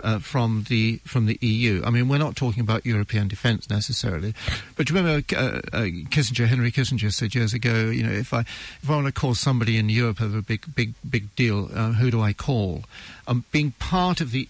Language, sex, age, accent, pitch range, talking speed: English, male, 50-69, British, 110-140 Hz, 230 wpm